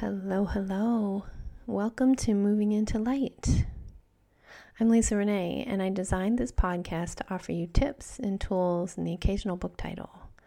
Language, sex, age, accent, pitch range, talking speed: English, female, 30-49, American, 175-225 Hz, 150 wpm